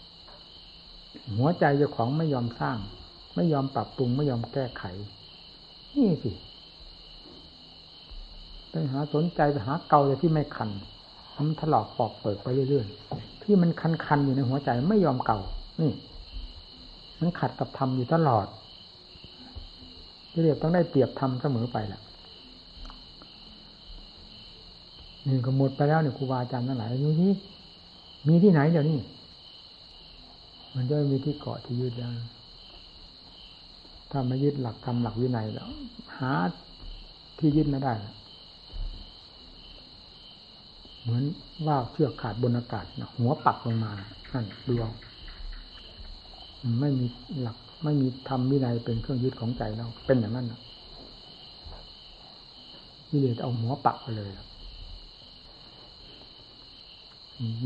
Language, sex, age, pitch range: Thai, male, 60-79, 95-140 Hz